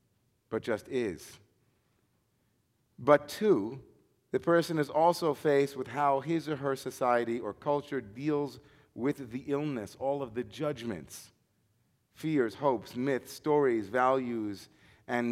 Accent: American